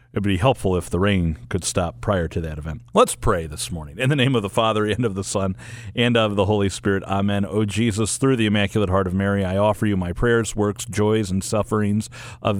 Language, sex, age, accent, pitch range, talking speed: English, male, 40-59, American, 95-110 Hz, 245 wpm